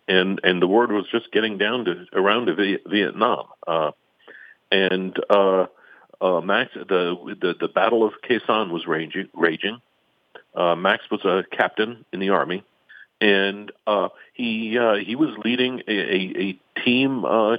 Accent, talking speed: American, 155 wpm